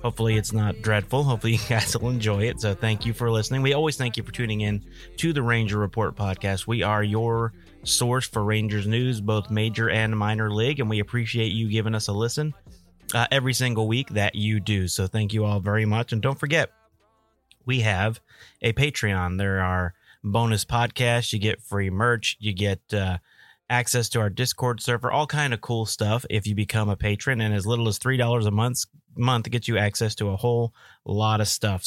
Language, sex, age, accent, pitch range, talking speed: English, male, 30-49, American, 105-120 Hz, 205 wpm